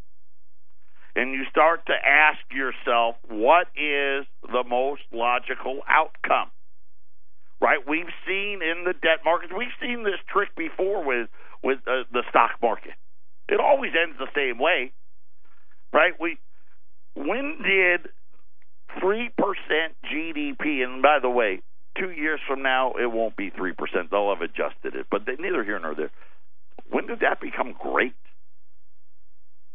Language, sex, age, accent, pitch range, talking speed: English, male, 50-69, American, 100-160 Hz, 140 wpm